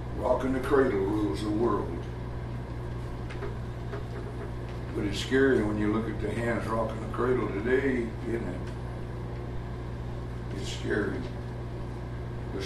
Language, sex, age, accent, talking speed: English, male, 60-79, American, 115 wpm